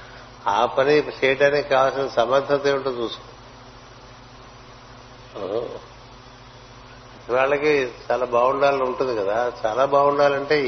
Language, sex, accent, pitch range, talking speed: Telugu, male, native, 125-135 Hz, 75 wpm